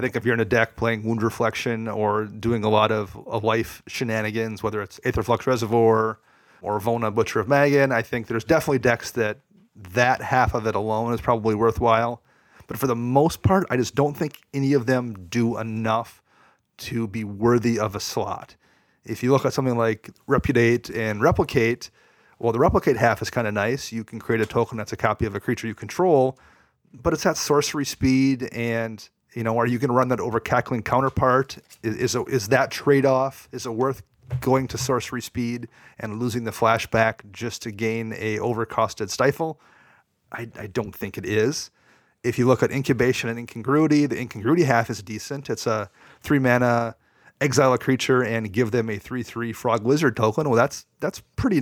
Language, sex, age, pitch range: English, male, 30-49, 110-130 Hz